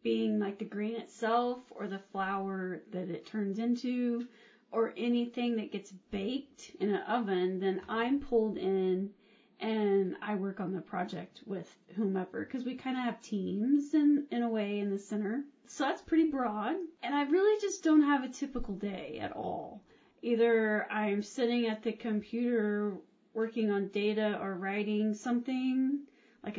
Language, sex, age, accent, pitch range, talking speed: English, female, 30-49, American, 200-235 Hz, 165 wpm